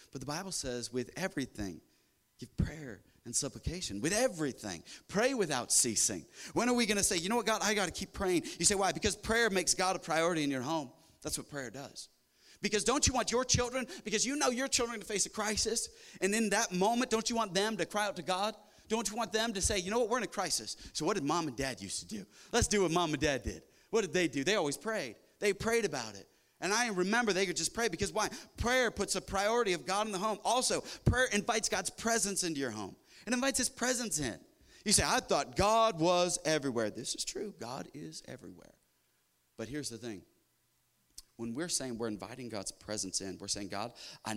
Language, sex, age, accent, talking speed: English, male, 30-49, American, 235 wpm